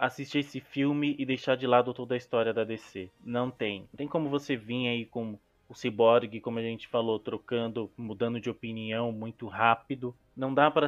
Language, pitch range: Portuguese, 110-130 Hz